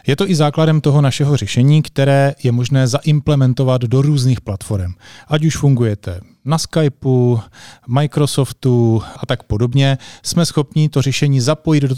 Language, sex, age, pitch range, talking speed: Slovak, male, 30-49, 120-140 Hz, 145 wpm